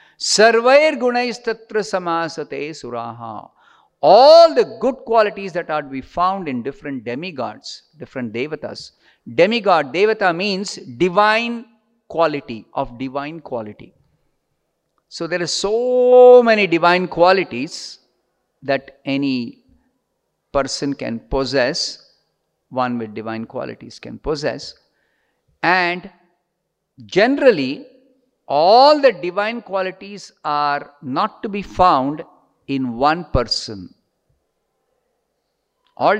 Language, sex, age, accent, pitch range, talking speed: English, male, 50-69, Indian, 145-235 Hz, 100 wpm